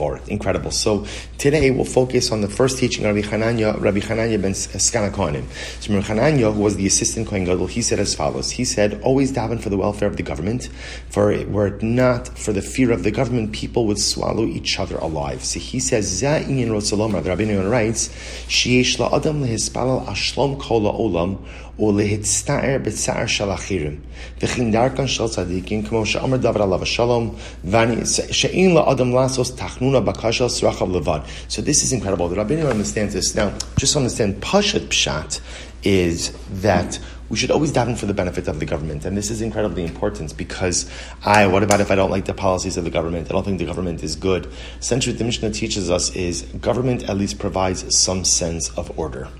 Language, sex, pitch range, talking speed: English, male, 90-115 Hz, 190 wpm